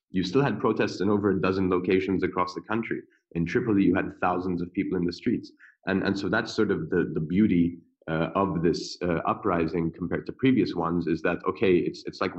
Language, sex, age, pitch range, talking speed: English, male, 30-49, 80-95 Hz, 225 wpm